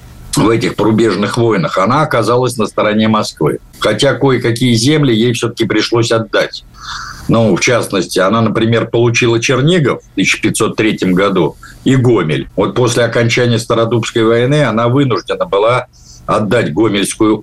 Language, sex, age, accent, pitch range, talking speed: Russian, male, 60-79, native, 110-135 Hz, 130 wpm